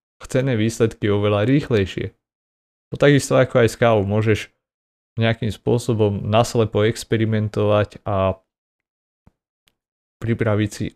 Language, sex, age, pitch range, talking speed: Slovak, male, 30-49, 100-115 Hz, 100 wpm